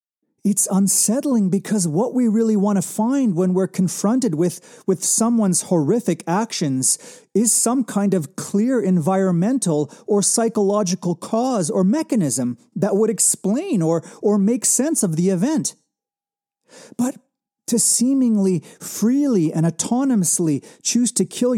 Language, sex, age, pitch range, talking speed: English, male, 40-59, 180-245 Hz, 130 wpm